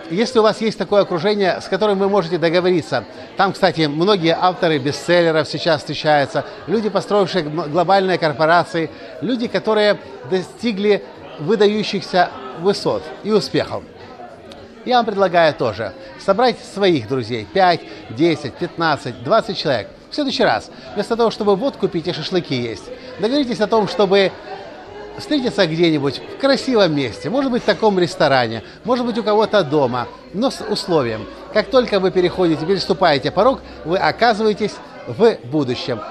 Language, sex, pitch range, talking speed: Russian, male, 150-210 Hz, 140 wpm